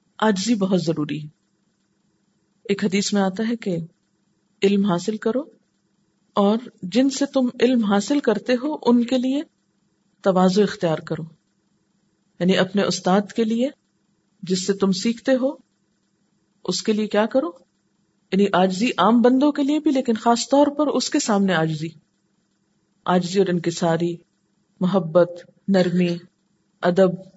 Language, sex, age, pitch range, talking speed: Urdu, female, 50-69, 180-220 Hz, 140 wpm